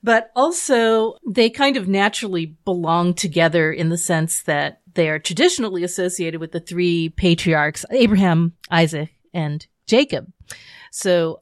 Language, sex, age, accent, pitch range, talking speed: English, female, 40-59, American, 160-190 Hz, 130 wpm